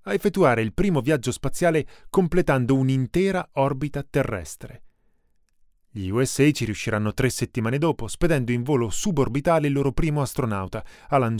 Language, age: Italian, 30-49